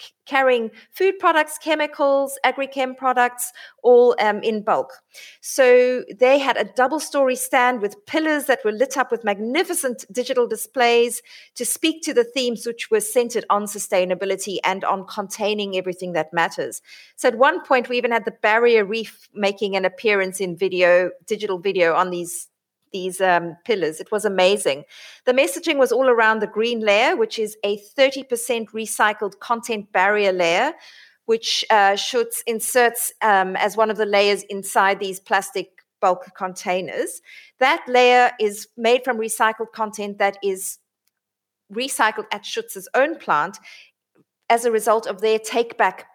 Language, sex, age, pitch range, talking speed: English, female, 30-49, 195-255 Hz, 155 wpm